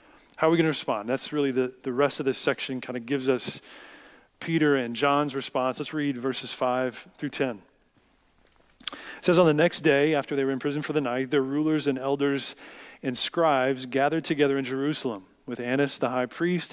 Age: 40-59